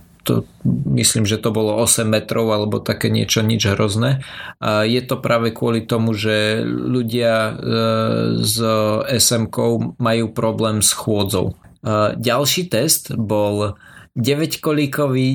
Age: 20-39